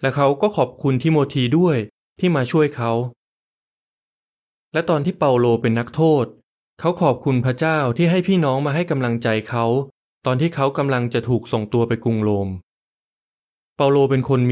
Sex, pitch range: male, 120-155 Hz